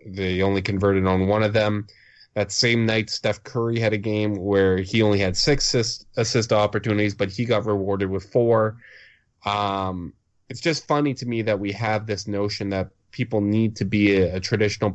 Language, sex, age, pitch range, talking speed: English, male, 20-39, 100-115 Hz, 190 wpm